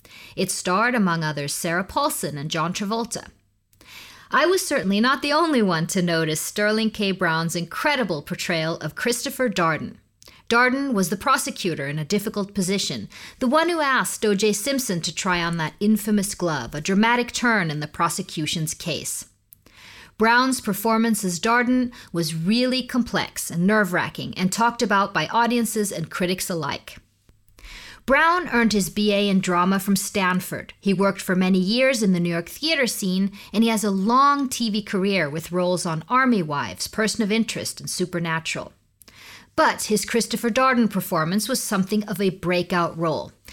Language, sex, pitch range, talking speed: English, female, 170-230 Hz, 160 wpm